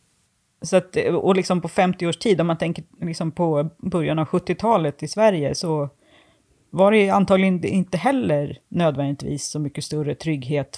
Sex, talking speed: female, 160 wpm